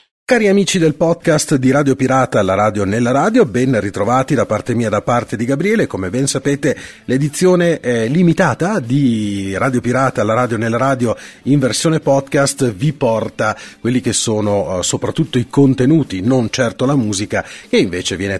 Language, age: Italian, 40-59